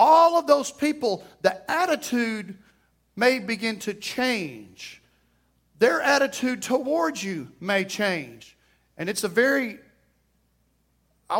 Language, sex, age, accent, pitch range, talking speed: English, male, 40-59, American, 160-225 Hz, 110 wpm